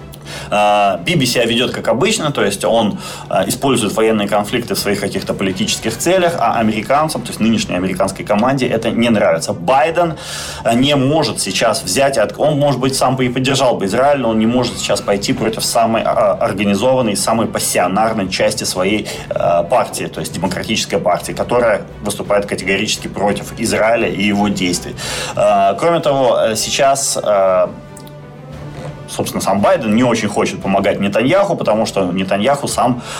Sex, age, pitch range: male, 30-49, 100-140 Hz